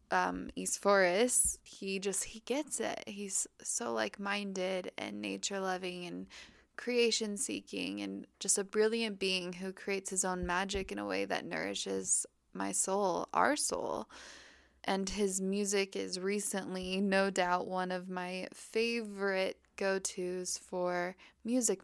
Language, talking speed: English, 130 wpm